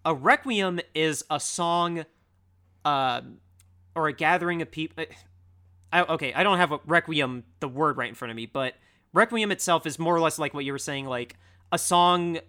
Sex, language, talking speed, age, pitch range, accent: male, English, 190 wpm, 30-49, 110-160 Hz, American